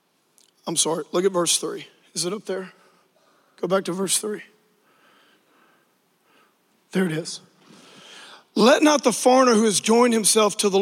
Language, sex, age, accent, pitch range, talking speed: English, male, 40-59, American, 220-290 Hz, 155 wpm